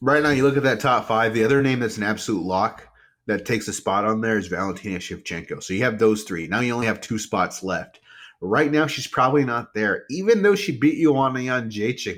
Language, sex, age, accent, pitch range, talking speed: English, male, 30-49, American, 105-145 Hz, 240 wpm